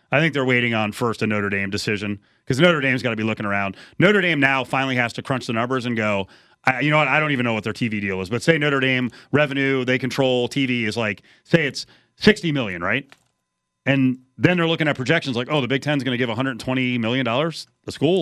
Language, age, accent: English, 30-49, American